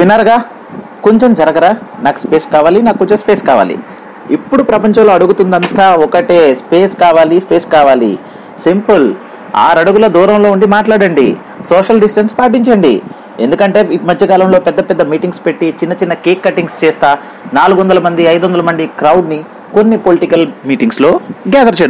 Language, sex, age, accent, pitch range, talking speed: English, male, 30-49, Indian, 170-215 Hz, 115 wpm